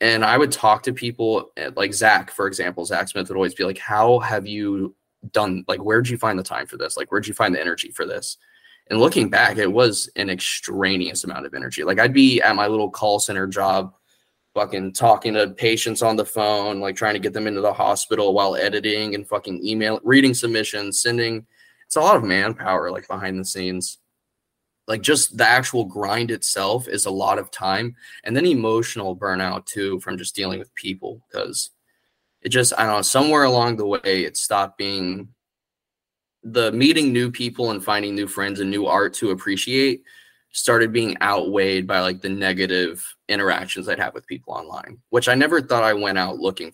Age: 20-39